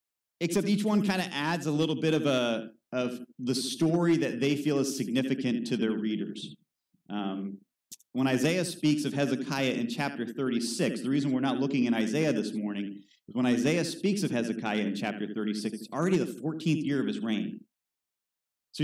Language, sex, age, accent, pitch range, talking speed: English, male, 30-49, American, 115-165 Hz, 185 wpm